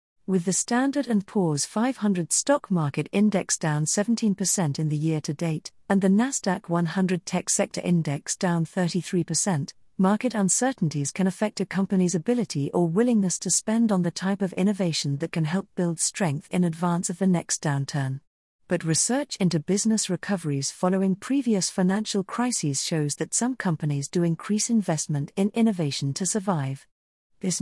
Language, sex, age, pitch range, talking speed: English, female, 50-69, 165-210 Hz, 155 wpm